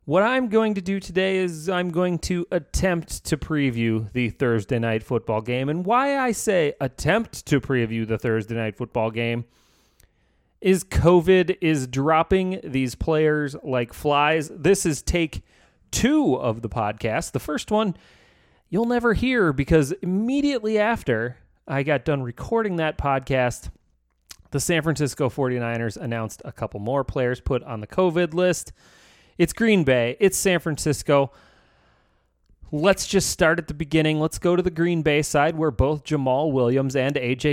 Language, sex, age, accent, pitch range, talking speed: English, male, 30-49, American, 125-180 Hz, 160 wpm